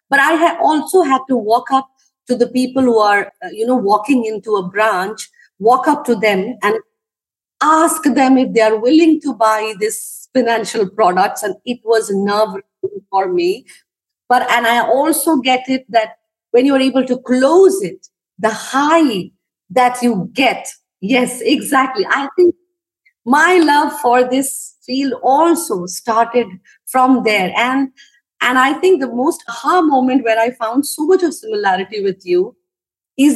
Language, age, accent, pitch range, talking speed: English, 50-69, Indian, 220-280 Hz, 165 wpm